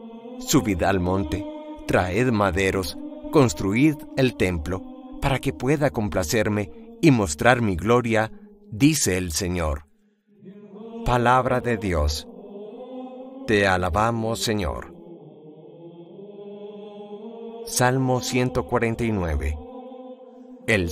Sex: male